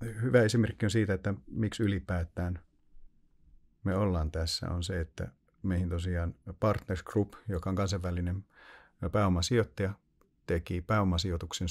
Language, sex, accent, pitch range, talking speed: Finnish, male, native, 85-105 Hz, 120 wpm